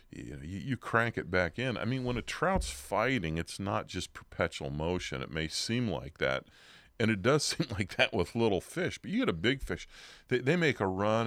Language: English